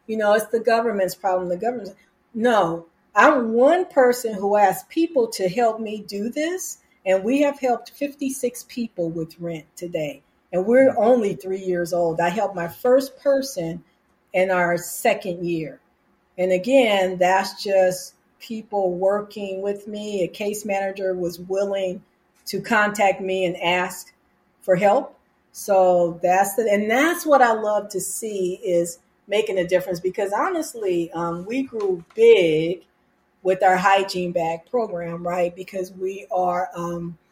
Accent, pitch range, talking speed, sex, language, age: American, 180-225 Hz, 150 wpm, female, English, 40-59